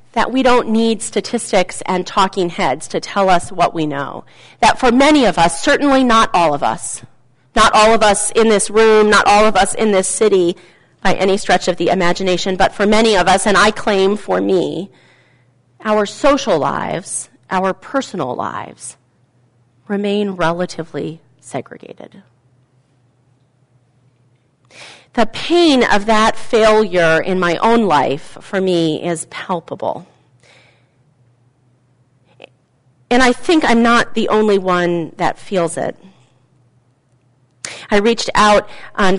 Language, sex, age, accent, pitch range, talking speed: English, female, 40-59, American, 145-225 Hz, 140 wpm